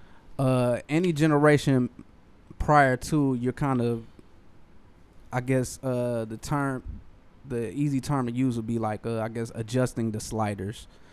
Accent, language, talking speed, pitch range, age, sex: American, English, 145 wpm, 110-130 Hz, 20-39, male